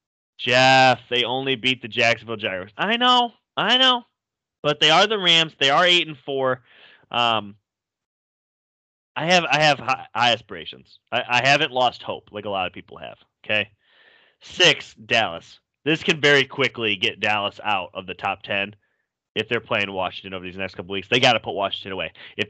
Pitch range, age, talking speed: 115-155 Hz, 30-49, 185 wpm